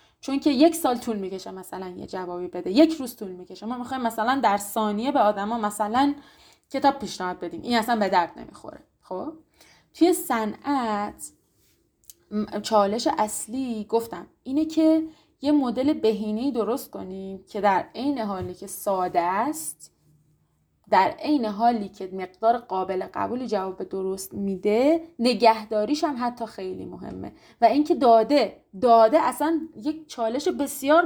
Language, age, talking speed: Persian, 20-39, 140 wpm